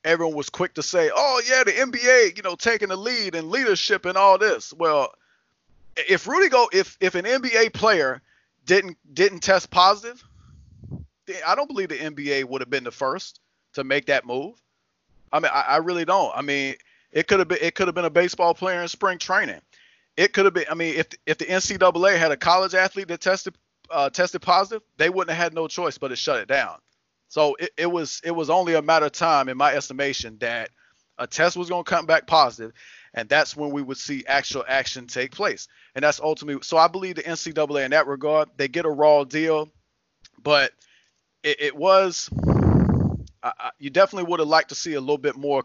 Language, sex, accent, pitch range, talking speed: English, male, American, 145-185 Hz, 215 wpm